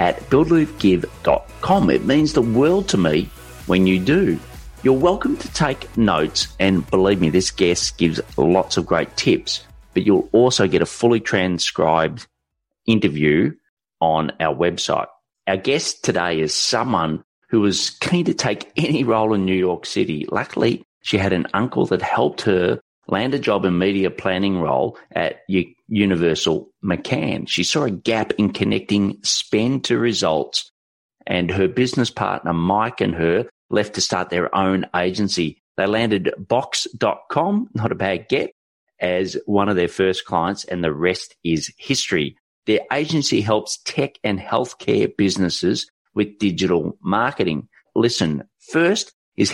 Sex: male